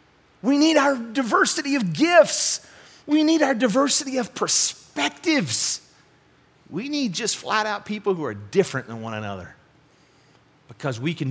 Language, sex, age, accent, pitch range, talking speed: English, male, 40-59, American, 125-185 Hz, 145 wpm